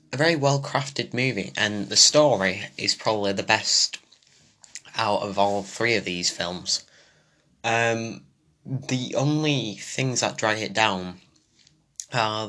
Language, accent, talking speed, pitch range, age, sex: English, British, 130 wpm, 100-115 Hz, 10-29, male